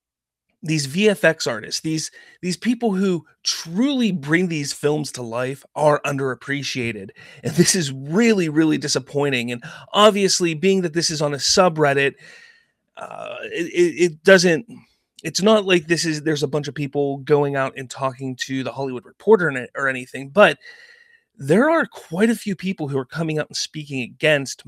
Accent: American